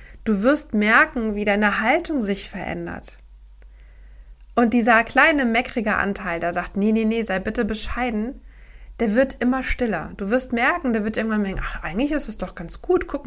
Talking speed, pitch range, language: 180 wpm, 185-245 Hz, German